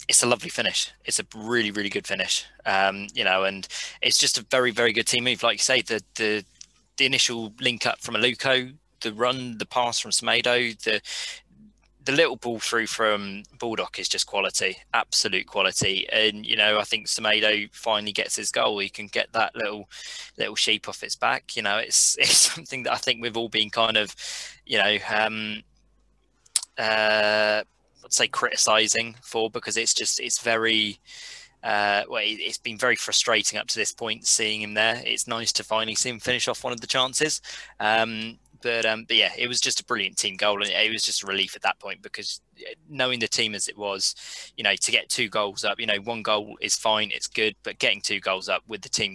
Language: English